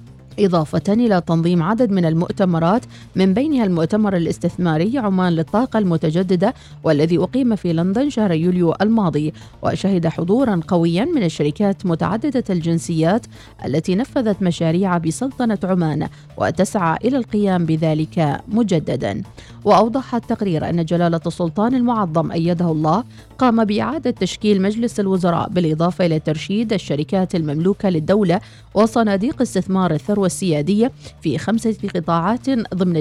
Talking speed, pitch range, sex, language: 115 wpm, 165-215 Hz, female, Arabic